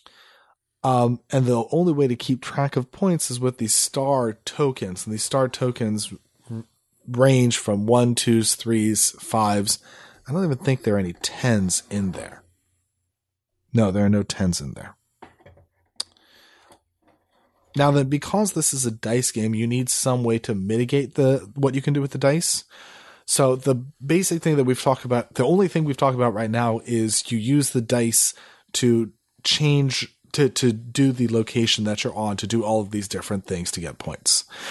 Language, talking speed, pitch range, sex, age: English, 180 wpm, 110-140 Hz, male, 30-49